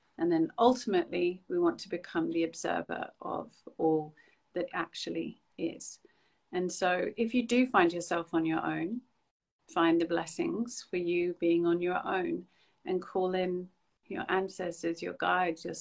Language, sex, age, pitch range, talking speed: English, female, 40-59, 170-220 Hz, 155 wpm